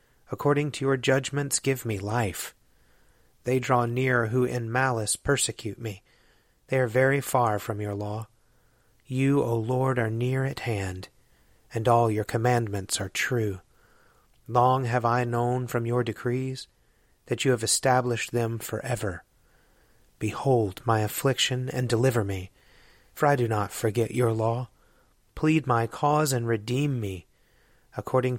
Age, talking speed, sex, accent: 30-49, 145 wpm, male, American